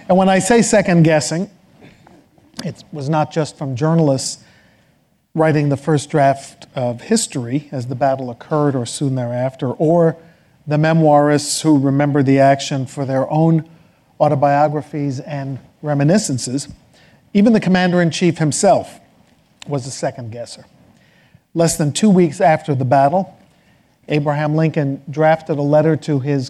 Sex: male